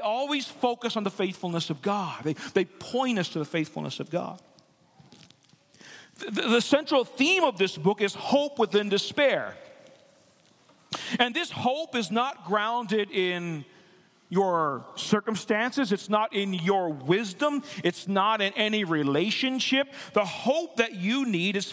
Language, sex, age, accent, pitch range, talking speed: English, male, 40-59, American, 190-265 Hz, 145 wpm